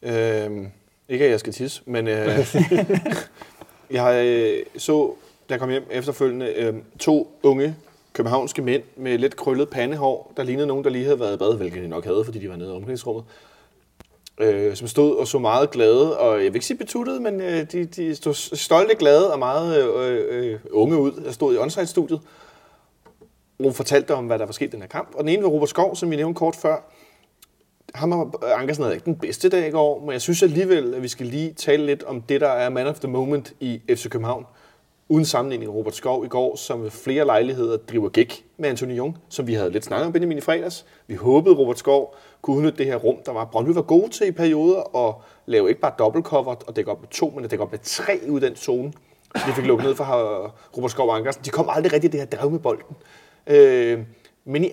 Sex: male